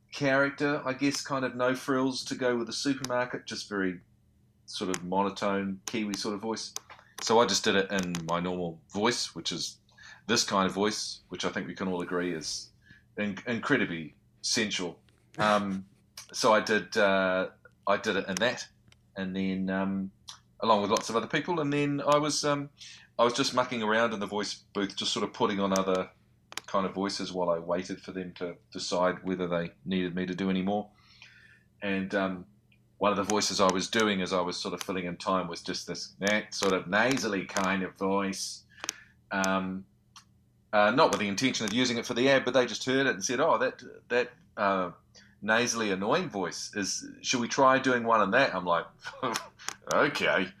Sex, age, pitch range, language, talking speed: male, 30-49, 95-120 Hz, English, 200 wpm